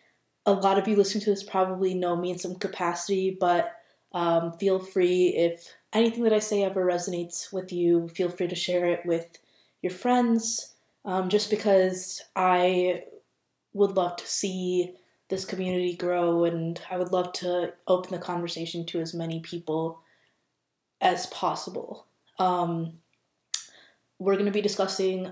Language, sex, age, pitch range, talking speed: English, female, 20-39, 175-195 Hz, 150 wpm